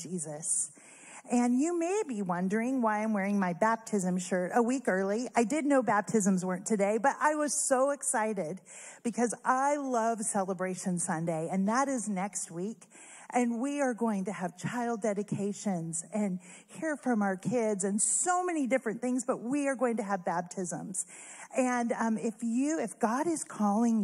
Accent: American